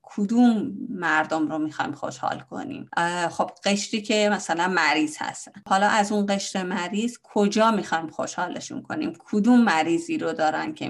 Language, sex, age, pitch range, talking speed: Persian, female, 30-49, 170-215 Hz, 145 wpm